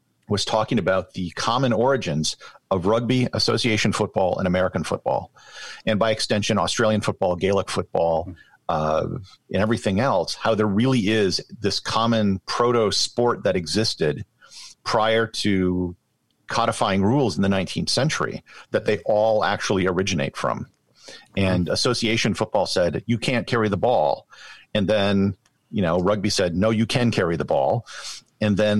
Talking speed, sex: 145 wpm, male